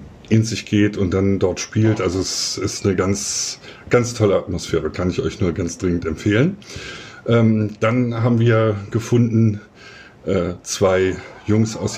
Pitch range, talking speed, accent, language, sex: 95-110 Hz, 155 wpm, German, German, male